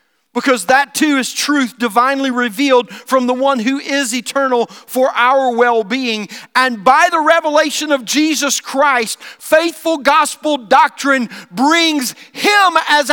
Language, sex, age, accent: English, male, 50-69, American